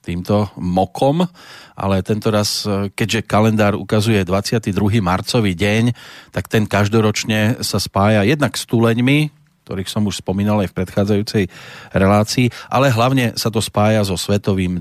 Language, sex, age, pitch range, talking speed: Slovak, male, 40-59, 95-115 Hz, 140 wpm